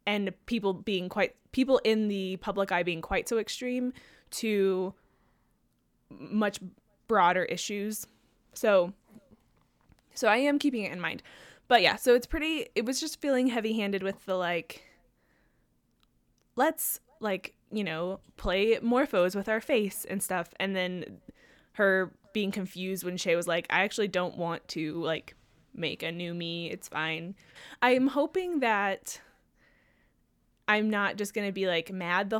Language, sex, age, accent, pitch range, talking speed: English, female, 10-29, American, 180-220 Hz, 155 wpm